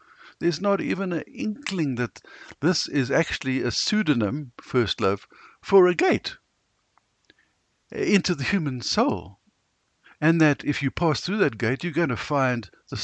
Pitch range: 105-140 Hz